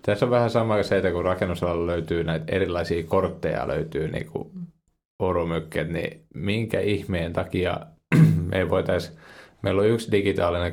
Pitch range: 85-105 Hz